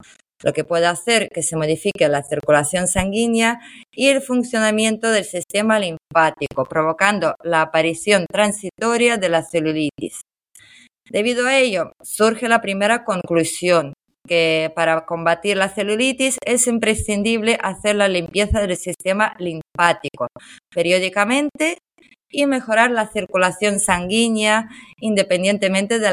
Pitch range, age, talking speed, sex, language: 170-230 Hz, 20-39, 115 wpm, female, Spanish